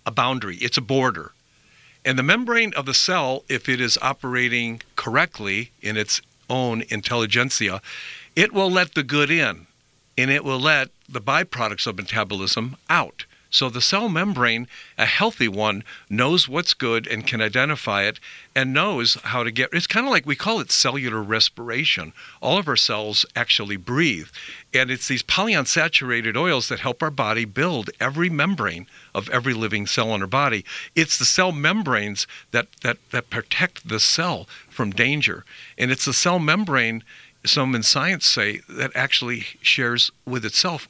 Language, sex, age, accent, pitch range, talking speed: English, male, 50-69, American, 115-150 Hz, 165 wpm